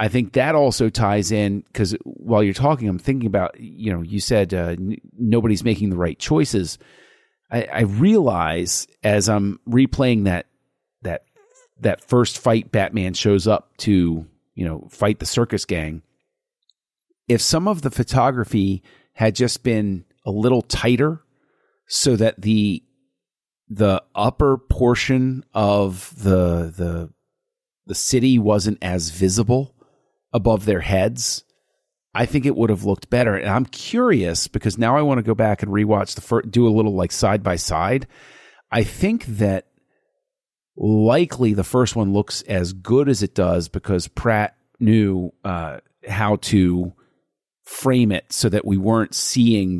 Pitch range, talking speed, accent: 95-125 Hz, 150 wpm, American